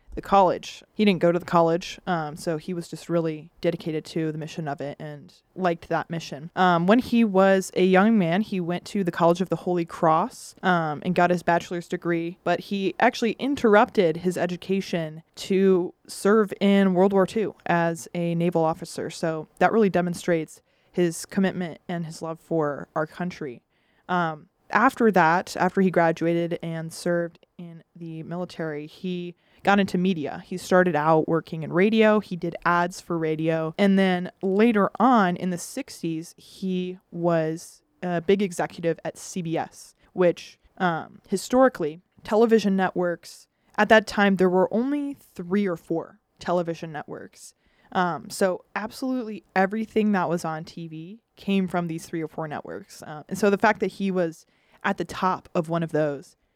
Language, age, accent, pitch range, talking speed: English, 20-39, American, 165-195 Hz, 170 wpm